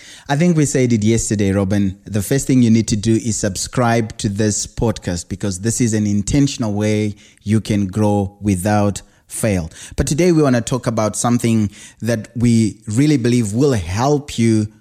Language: English